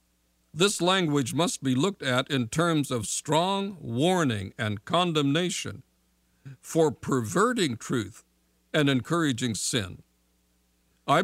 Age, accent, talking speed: 60-79, American, 105 wpm